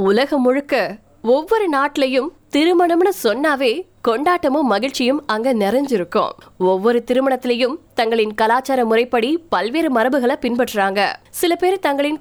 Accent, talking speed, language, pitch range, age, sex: native, 50 wpm, Tamil, 225-300 Hz, 20-39, female